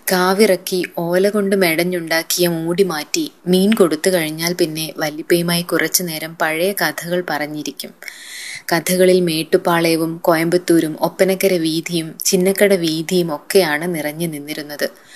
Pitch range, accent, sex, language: 165-195 Hz, native, female, Malayalam